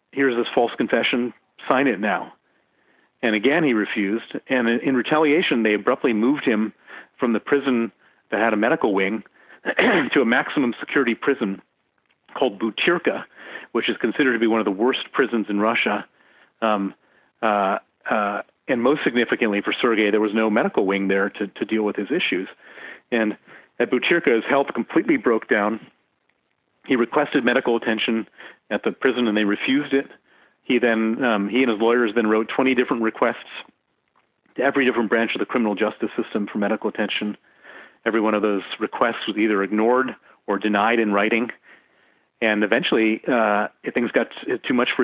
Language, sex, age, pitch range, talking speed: English, male, 40-59, 105-120 Hz, 170 wpm